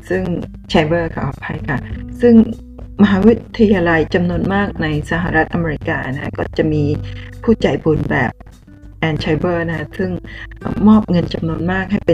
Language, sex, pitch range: Thai, female, 110-165 Hz